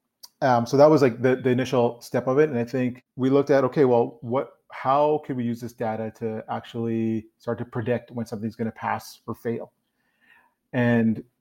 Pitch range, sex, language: 110-125 Hz, male, English